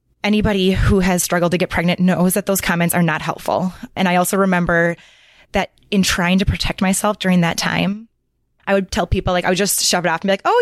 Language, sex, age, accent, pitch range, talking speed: English, female, 20-39, American, 170-200 Hz, 235 wpm